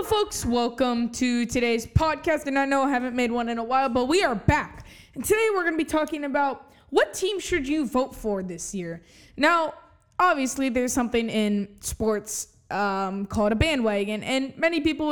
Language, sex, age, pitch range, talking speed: English, female, 20-39, 220-295 Hz, 190 wpm